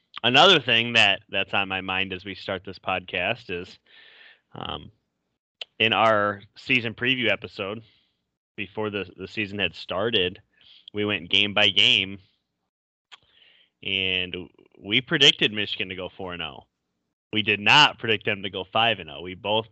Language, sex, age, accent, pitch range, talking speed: English, male, 10-29, American, 100-120 Hz, 155 wpm